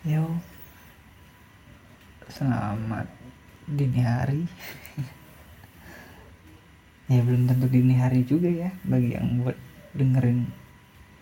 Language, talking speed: Indonesian, 80 wpm